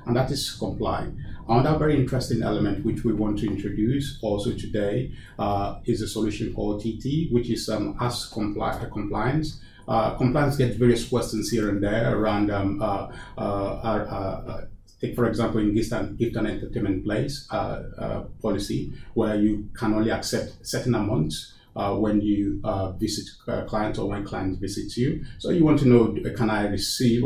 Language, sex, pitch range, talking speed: English, male, 105-120 Hz, 170 wpm